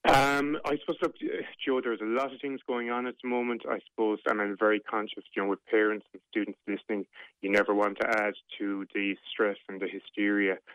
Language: English